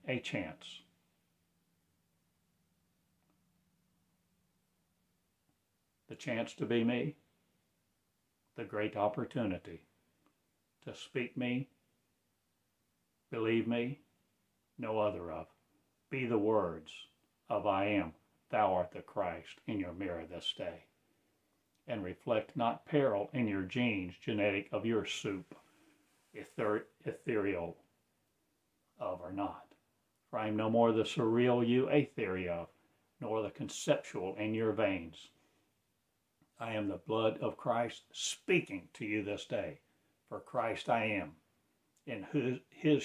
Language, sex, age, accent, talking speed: English, male, 60-79, American, 115 wpm